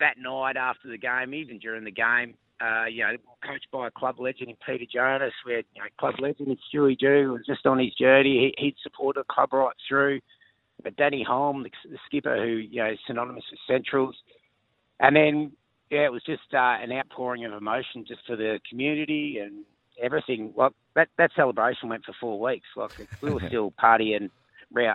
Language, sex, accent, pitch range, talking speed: English, male, Australian, 115-140 Hz, 195 wpm